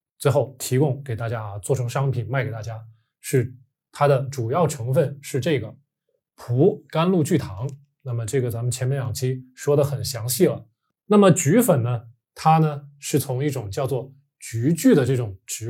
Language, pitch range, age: Chinese, 120-145 Hz, 20-39